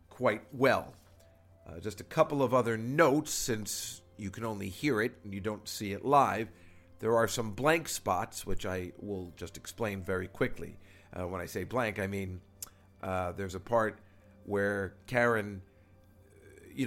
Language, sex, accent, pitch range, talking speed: English, male, American, 95-120 Hz, 165 wpm